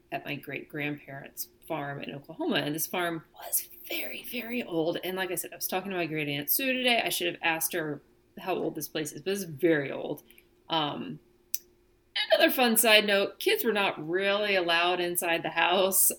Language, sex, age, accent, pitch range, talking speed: English, female, 30-49, American, 150-210 Hz, 200 wpm